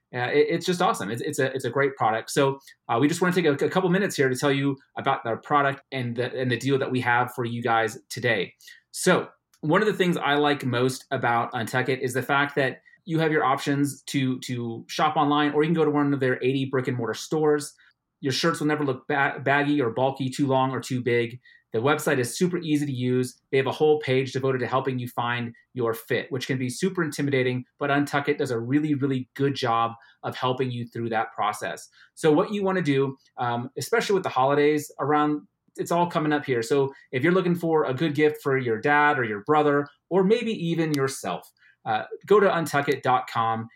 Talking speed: 230 wpm